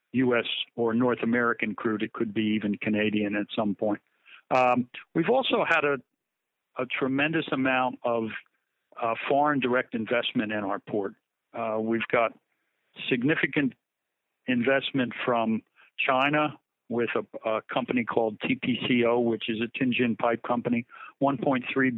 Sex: male